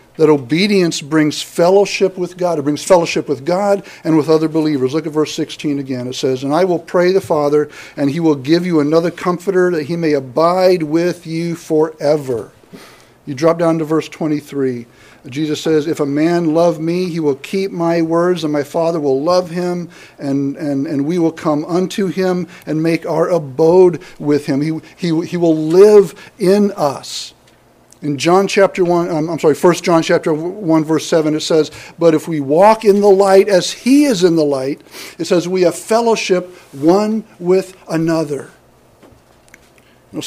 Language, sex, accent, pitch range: English, male, American, 150-185 Hz